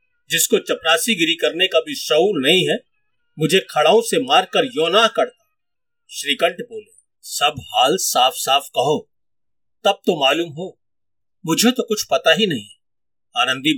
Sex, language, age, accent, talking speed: male, Hindi, 50-69, native, 140 wpm